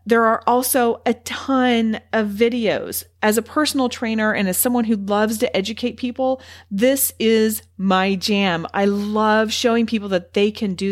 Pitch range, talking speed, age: 185-240 Hz, 170 wpm, 40-59